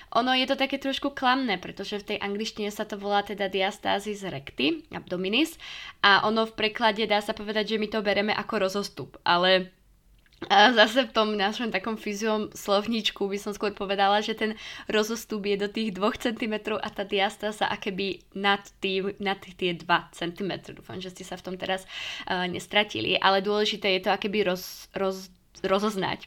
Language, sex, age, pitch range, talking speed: Slovak, female, 20-39, 185-215 Hz, 185 wpm